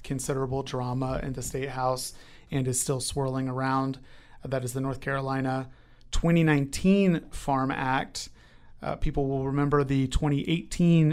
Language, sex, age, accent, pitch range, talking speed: English, male, 30-49, American, 130-145 Hz, 135 wpm